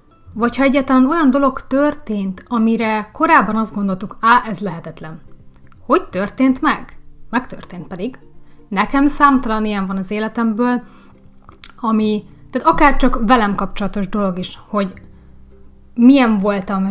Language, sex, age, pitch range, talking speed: Hungarian, female, 30-49, 185-240 Hz, 125 wpm